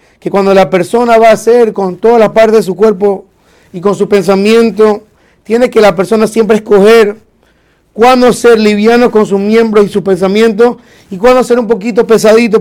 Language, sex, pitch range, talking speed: Spanish, male, 185-220 Hz, 185 wpm